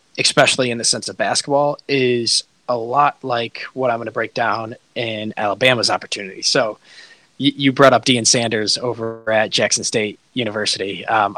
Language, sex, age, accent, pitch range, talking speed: English, male, 20-39, American, 110-130 Hz, 165 wpm